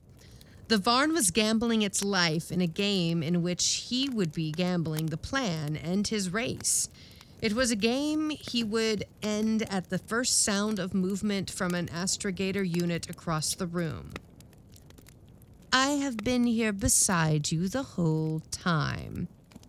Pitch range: 170-220 Hz